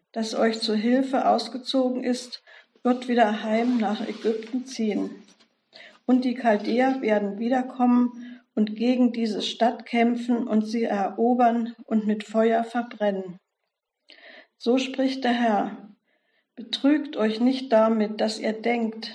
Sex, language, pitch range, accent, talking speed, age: female, German, 220-245 Hz, German, 125 wpm, 50-69